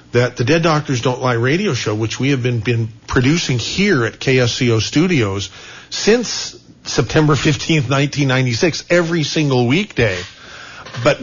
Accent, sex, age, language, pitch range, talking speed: American, male, 50-69, English, 120-165 Hz, 140 wpm